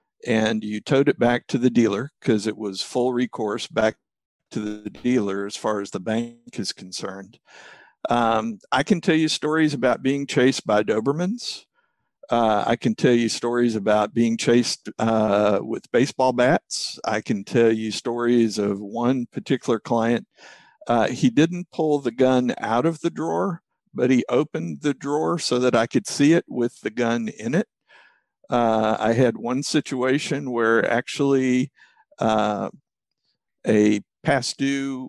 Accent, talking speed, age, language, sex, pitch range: American, 160 wpm, 50-69, English, male, 110-135 Hz